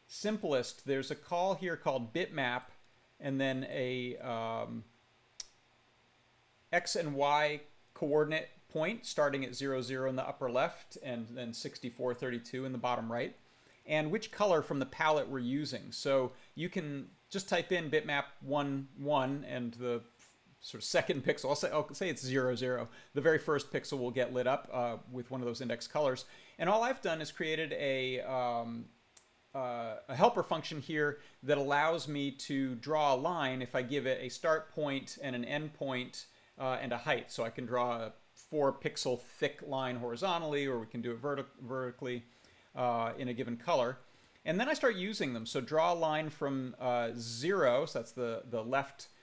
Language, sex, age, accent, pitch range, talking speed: English, male, 40-59, American, 125-150 Hz, 180 wpm